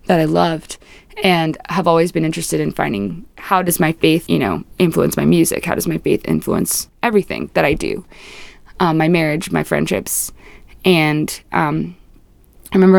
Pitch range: 155-185 Hz